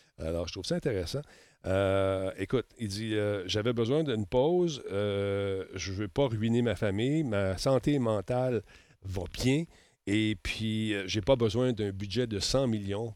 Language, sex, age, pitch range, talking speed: French, male, 40-59, 100-130 Hz, 175 wpm